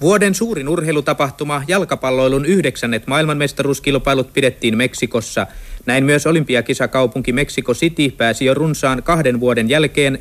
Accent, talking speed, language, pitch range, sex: native, 110 wpm, Finnish, 120-150 Hz, male